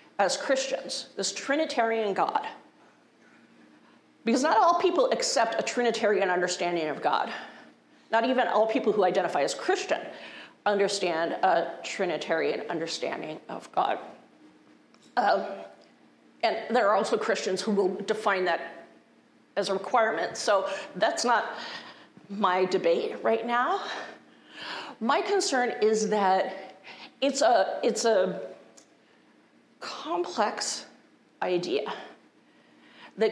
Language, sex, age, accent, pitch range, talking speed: English, female, 40-59, American, 200-255 Hz, 105 wpm